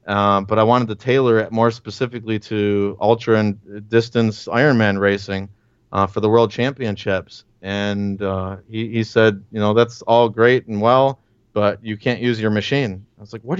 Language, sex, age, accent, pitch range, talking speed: English, male, 30-49, American, 110-125 Hz, 185 wpm